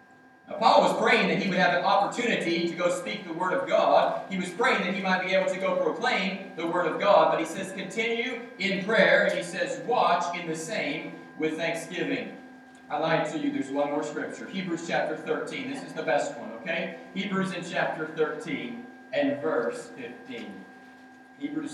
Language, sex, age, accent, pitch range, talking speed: English, male, 40-59, American, 165-265 Hz, 195 wpm